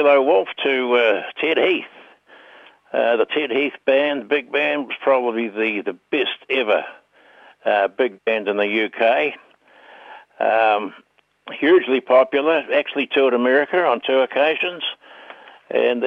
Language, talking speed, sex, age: English, 130 wpm, male, 60-79